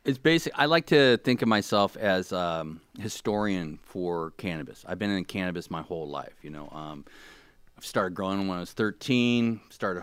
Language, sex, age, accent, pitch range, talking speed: English, male, 40-59, American, 90-110 Hz, 190 wpm